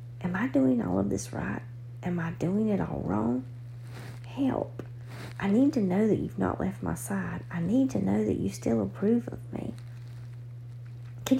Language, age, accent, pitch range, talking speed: English, 40-59, American, 120-180 Hz, 185 wpm